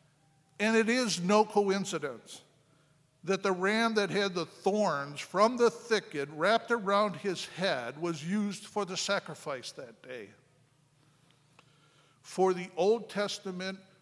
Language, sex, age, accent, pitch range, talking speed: English, male, 50-69, American, 145-185 Hz, 130 wpm